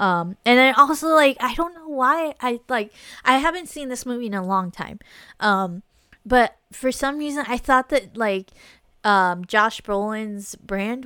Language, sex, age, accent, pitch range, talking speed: English, female, 20-39, American, 190-230 Hz, 180 wpm